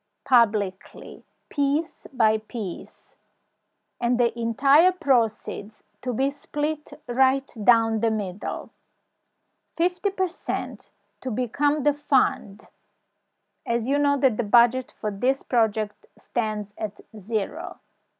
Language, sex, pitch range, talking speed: English, female, 215-285 Hz, 105 wpm